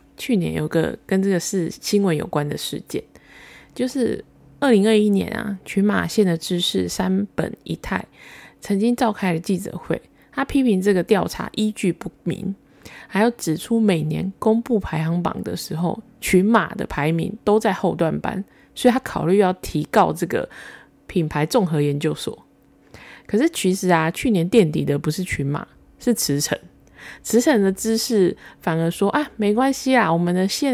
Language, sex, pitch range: Chinese, female, 170-225 Hz